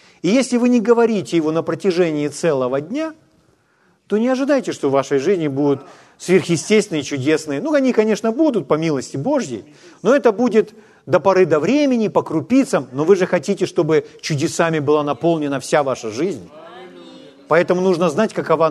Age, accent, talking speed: 40-59, native, 165 wpm